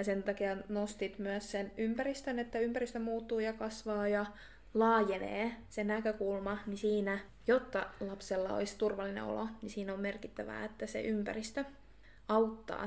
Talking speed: 145 wpm